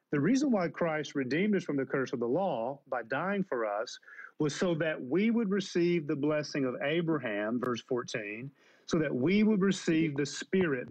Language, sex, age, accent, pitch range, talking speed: English, male, 40-59, American, 135-180 Hz, 195 wpm